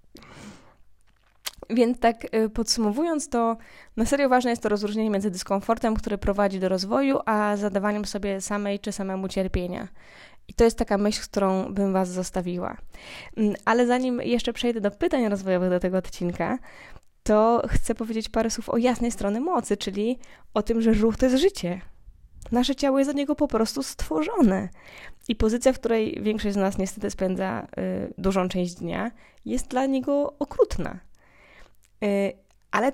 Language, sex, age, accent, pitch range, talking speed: Polish, female, 20-39, native, 200-245 Hz, 155 wpm